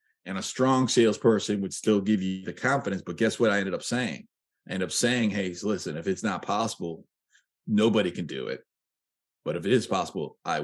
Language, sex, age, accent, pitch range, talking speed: English, male, 30-49, American, 110-150 Hz, 210 wpm